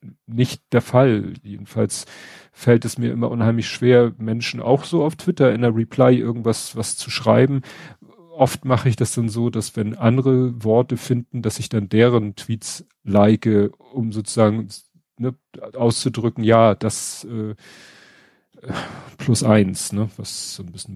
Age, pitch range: 40-59, 110-125 Hz